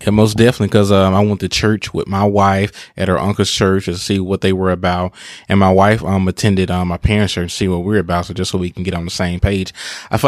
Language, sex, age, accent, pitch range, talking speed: English, male, 20-39, American, 95-115 Hz, 290 wpm